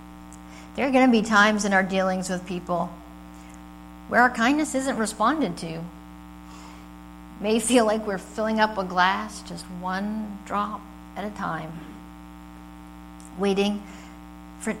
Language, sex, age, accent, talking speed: English, female, 50-69, American, 140 wpm